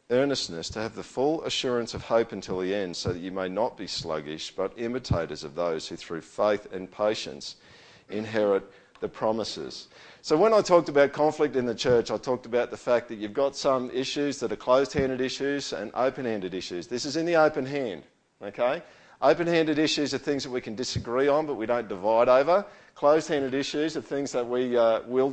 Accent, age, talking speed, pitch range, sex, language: Australian, 50-69, 210 wpm, 115-145 Hz, male, English